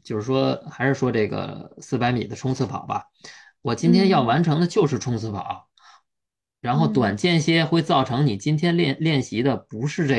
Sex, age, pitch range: male, 20-39, 115-155 Hz